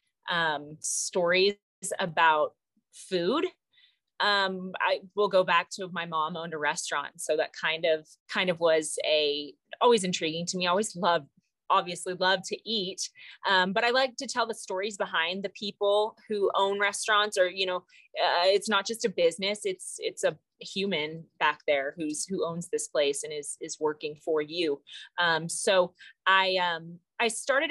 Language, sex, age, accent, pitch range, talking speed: English, female, 30-49, American, 170-225 Hz, 170 wpm